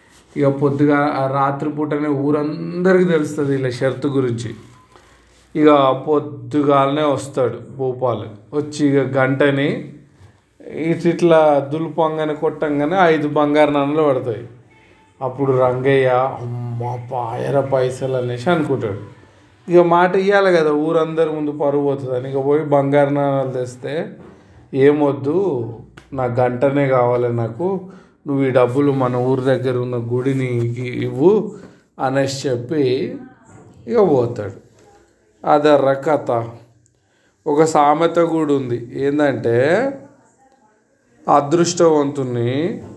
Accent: native